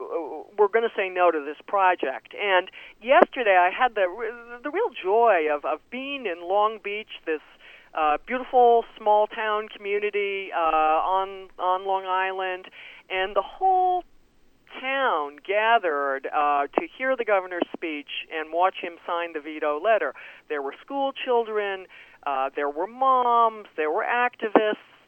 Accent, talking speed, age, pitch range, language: American, 150 wpm, 50-69, 175-245 Hz, English